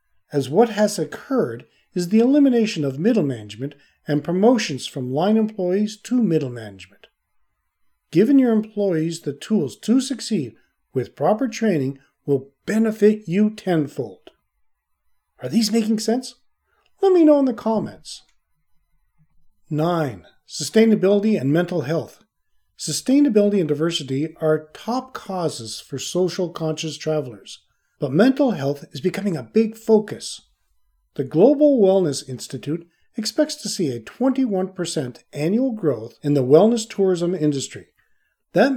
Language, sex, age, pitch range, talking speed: English, male, 40-59, 145-220 Hz, 125 wpm